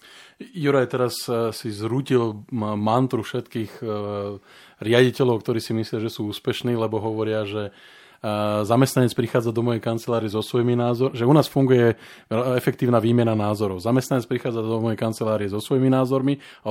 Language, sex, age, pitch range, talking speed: Slovak, male, 20-39, 105-125 Hz, 145 wpm